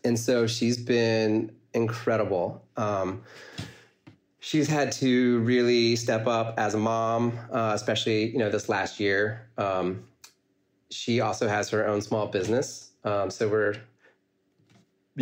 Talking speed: 130 wpm